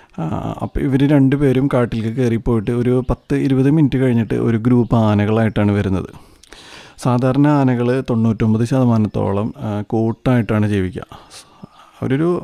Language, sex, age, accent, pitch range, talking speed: Malayalam, male, 30-49, native, 105-130 Hz, 100 wpm